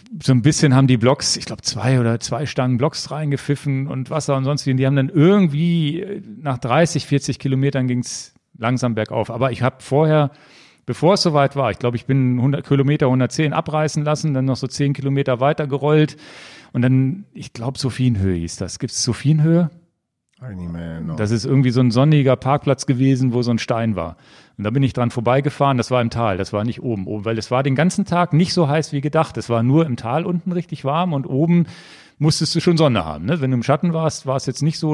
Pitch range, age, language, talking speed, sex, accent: 125-150 Hz, 40-59, German, 215 wpm, male, German